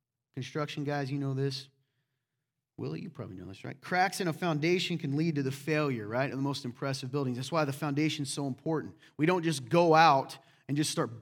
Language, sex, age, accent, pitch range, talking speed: English, male, 30-49, American, 135-170 Hz, 220 wpm